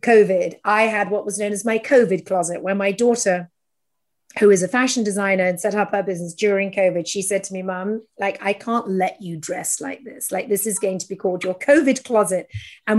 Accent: British